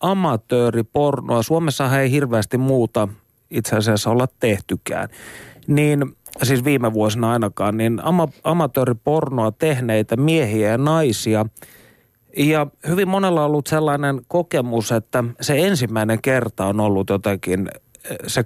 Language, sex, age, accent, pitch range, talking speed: Finnish, male, 30-49, native, 105-140 Hz, 115 wpm